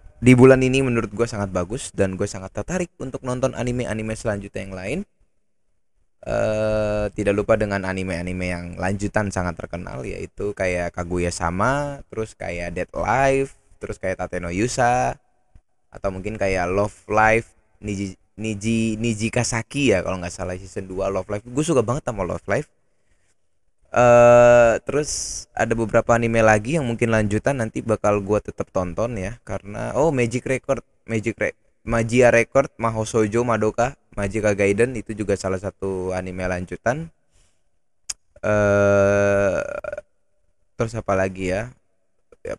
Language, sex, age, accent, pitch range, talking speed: Indonesian, male, 20-39, native, 95-125 Hz, 140 wpm